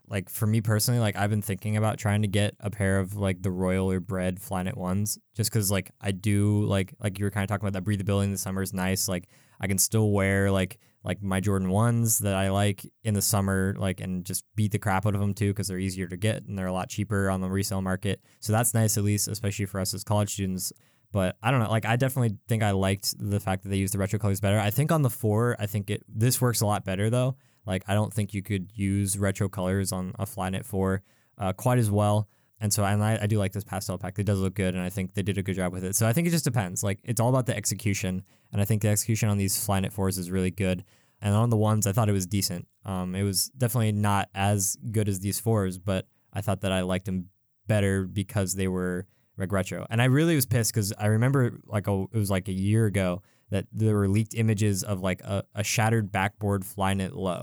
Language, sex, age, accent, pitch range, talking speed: English, male, 20-39, American, 95-110 Hz, 265 wpm